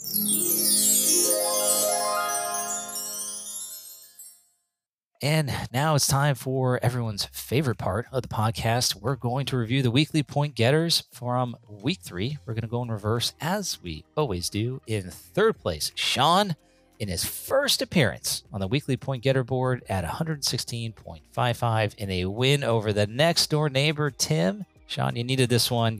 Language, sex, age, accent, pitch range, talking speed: English, male, 30-49, American, 100-130 Hz, 145 wpm